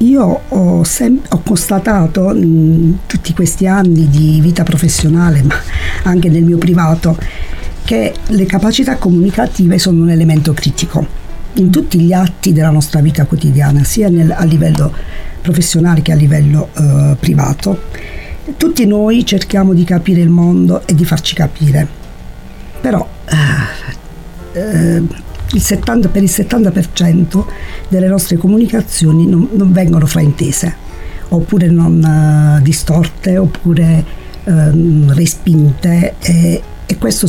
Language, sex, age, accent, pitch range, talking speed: Italian, female, 50-69, native, 155-185 Hz, 115 wpm